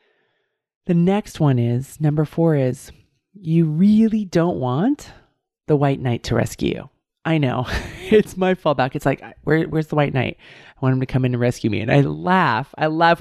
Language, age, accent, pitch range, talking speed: English, 30-49, American, 120-155 Hz, 190 wpm